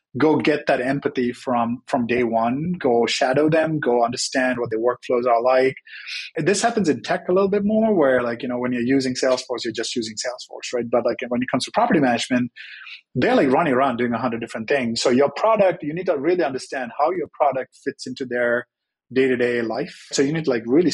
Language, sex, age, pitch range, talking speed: English, male, 30-49, 120-155 Hz, 225 wpm